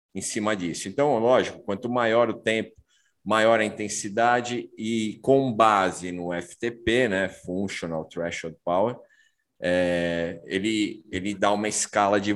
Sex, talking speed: male, 135 wpm